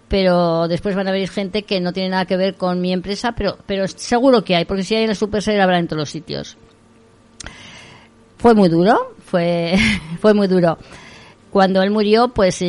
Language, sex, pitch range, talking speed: Spanish, female, 165-210 Hz, 200 wpm